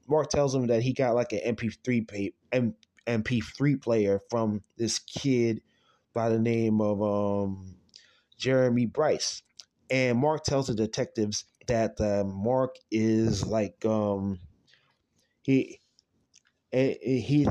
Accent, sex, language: American, male, English